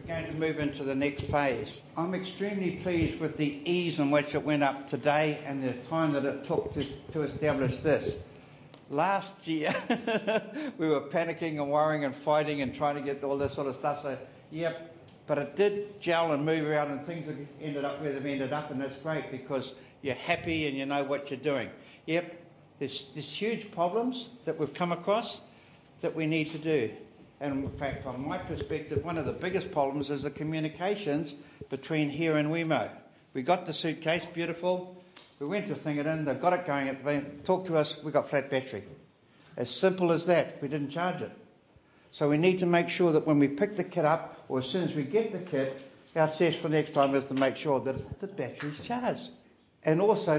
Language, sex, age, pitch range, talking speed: English, male, 60-79, 140-165 Hz, 215 wpm